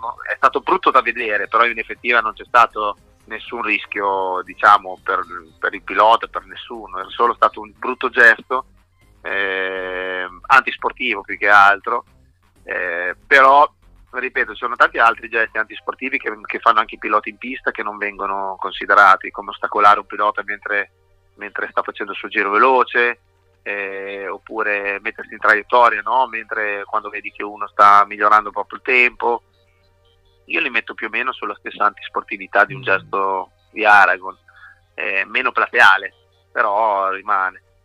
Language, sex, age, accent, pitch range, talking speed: Italian, male, 30-49, native, 95-110 Hz, 155 wpm